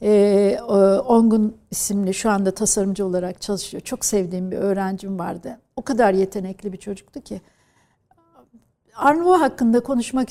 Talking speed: 135 wpm